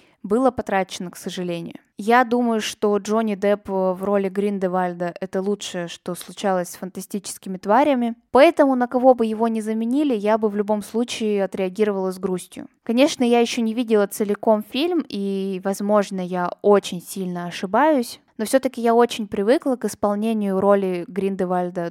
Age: 10-29